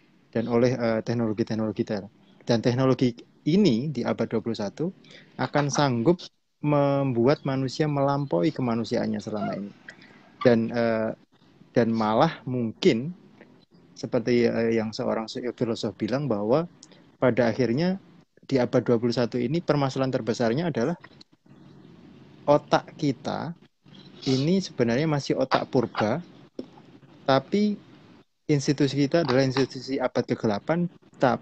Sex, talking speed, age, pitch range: male, 105 wpm, 30-49, 115-145 Hz